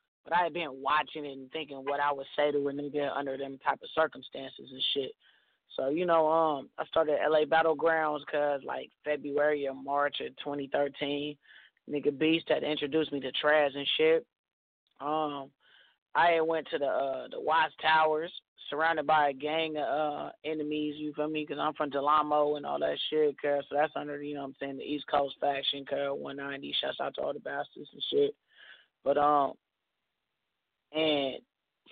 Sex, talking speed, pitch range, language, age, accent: male, 190 wpm, 145-155 Hz, English, 20-39, American